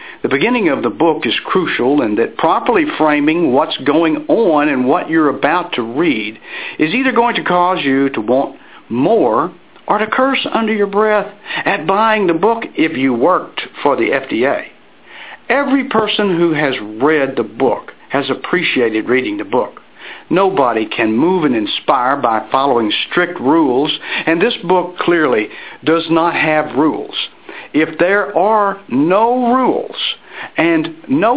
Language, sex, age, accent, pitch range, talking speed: English, male, 60-79, American, 160-265 Hz, 155 wpm